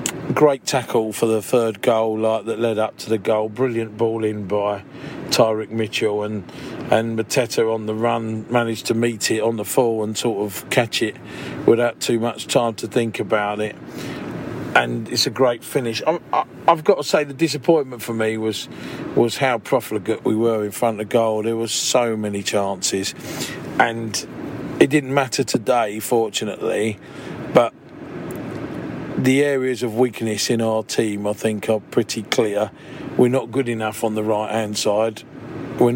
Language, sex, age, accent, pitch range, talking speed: English, male, 40-59, British, 110-130 Hz, 175 wpm